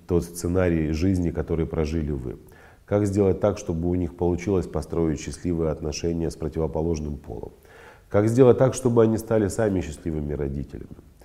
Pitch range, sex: 80-95 Hz, male